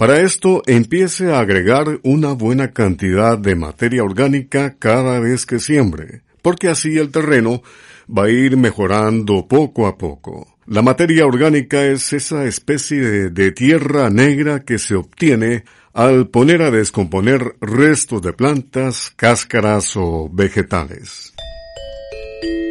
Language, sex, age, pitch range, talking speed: Spanish, male, 50-69, 105-140 Hz, 130 wpm